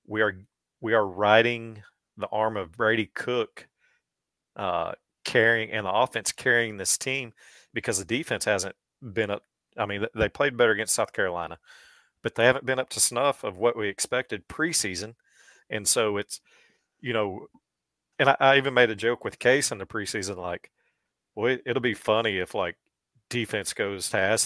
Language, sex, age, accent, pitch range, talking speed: English, male, 40-59, American, 105-135 Hz, 180 wpm